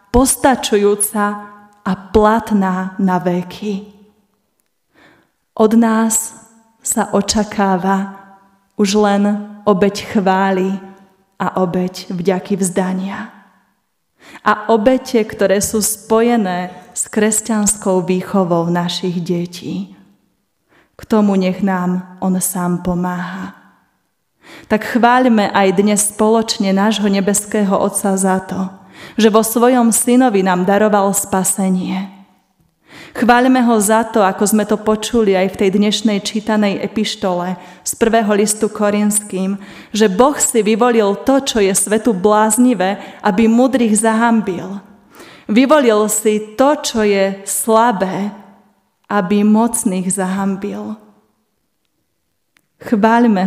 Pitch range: 195-220 Hz